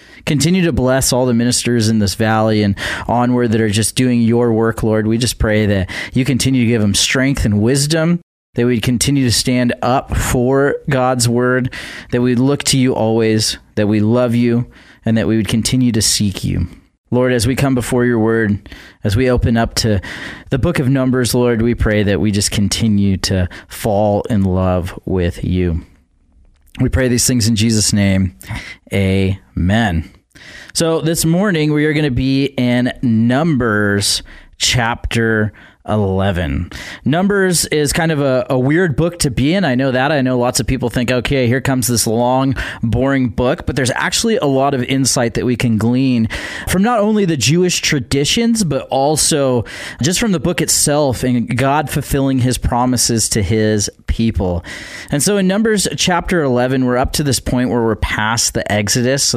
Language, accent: English, American